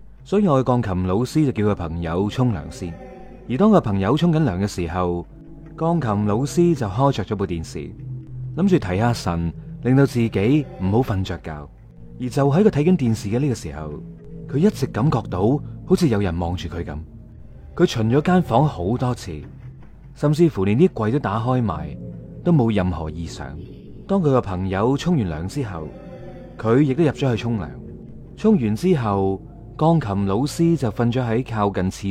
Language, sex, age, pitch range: Chinese, male, 30-49, 100-150 Hz